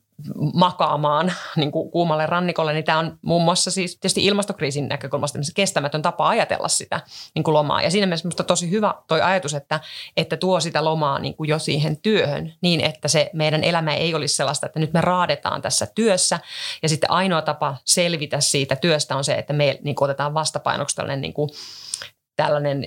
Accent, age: native, 30-49